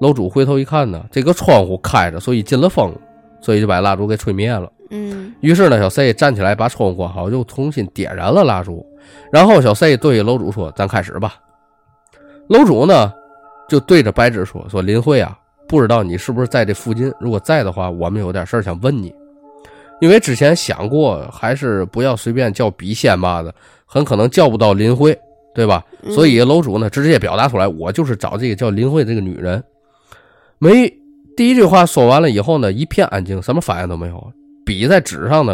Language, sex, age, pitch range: Chinese, male, 20-39, 100-145 Hz